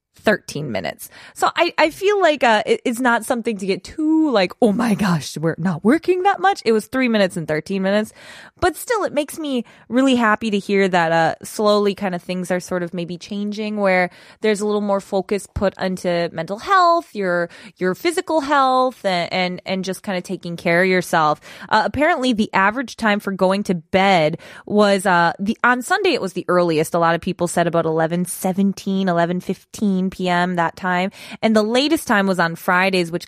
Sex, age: female, 20-39